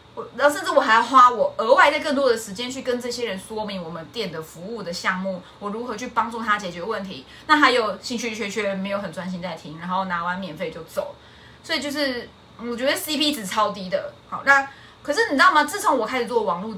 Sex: female